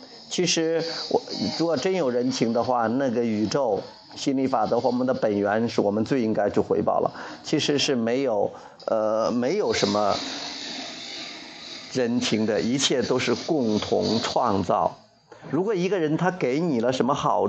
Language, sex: Chinese, male